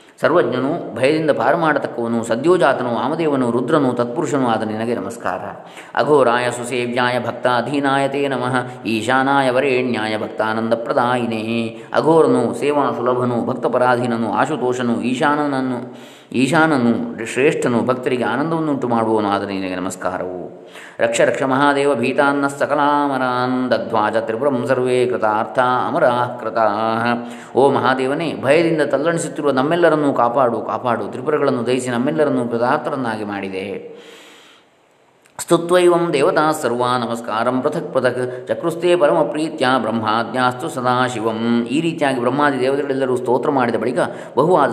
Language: Kannada